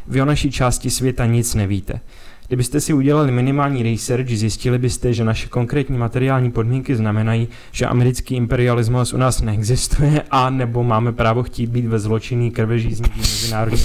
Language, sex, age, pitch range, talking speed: Czech, male, 20-39, 110-125 Hz, 155 wpm